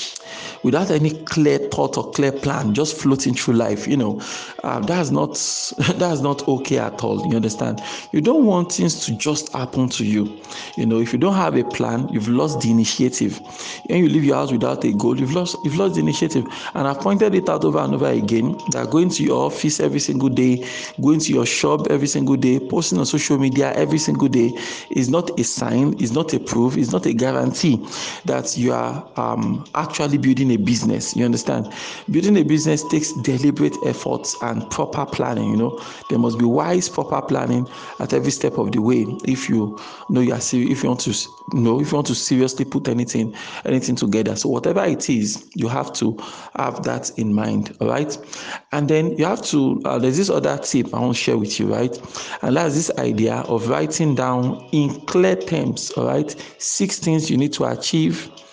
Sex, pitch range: male, 115-155 Hz